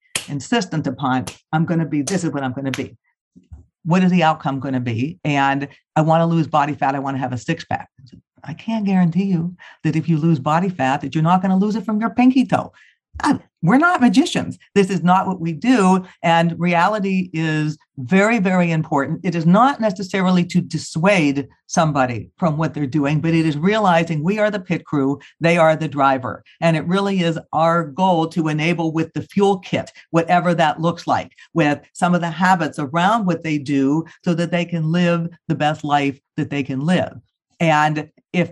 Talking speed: 205 wpm